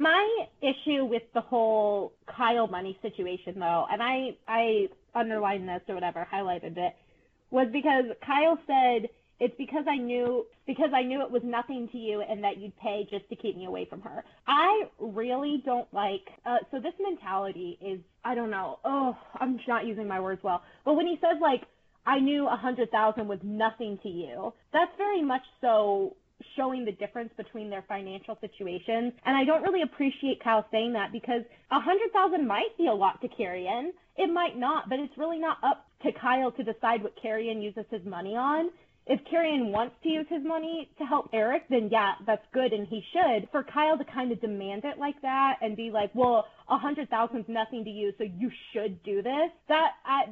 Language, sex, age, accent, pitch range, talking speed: English, female, 20-39, American, 215-285 Hz, 200 wpm